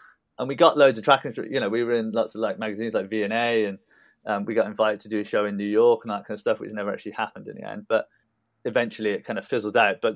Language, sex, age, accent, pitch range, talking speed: English, male, 20-39, British, 105-120 Hz, 290 wpm